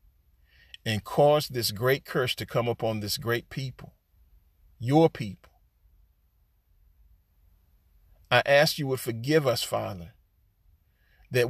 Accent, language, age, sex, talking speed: American, English, 40-59, male, 110 wpm